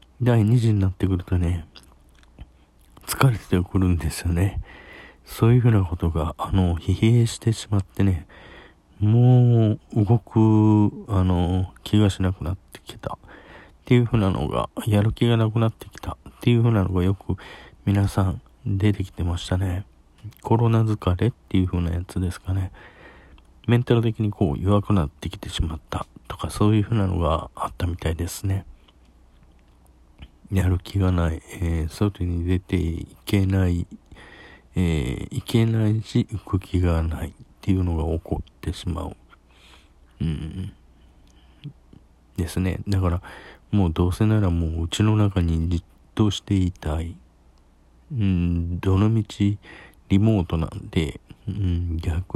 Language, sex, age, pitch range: Japanese, male, 40-59, 80-105 Hz